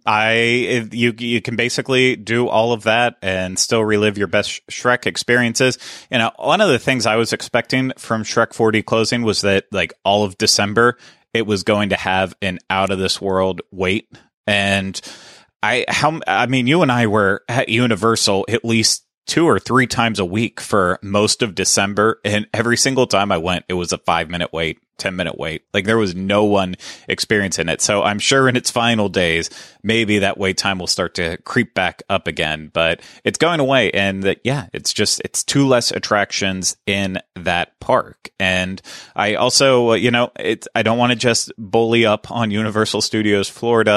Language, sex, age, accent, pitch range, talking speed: English, male, 30-49, American, 95-115 Hz, 195 wpm